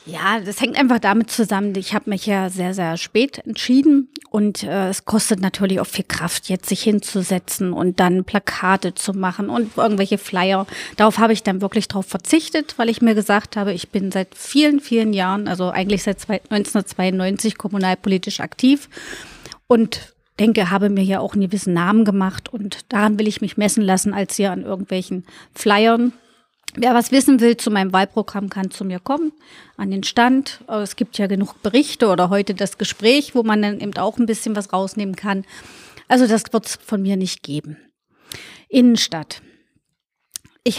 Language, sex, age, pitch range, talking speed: German, female, 30-49, 195-235 Hz, 180 wpm